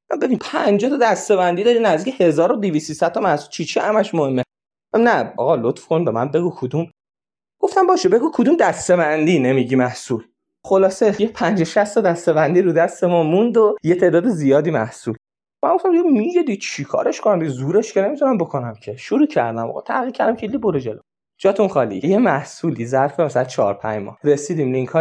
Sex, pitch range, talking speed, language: male, 140-215 Hz, 160 wpm, Persian